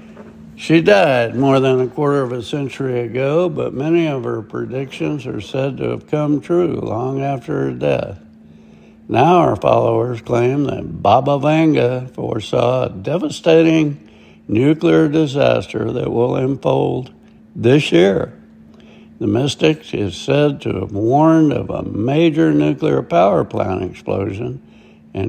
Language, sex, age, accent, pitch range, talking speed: English, male, 60-79, American, 110-155 Hz, 135 wpm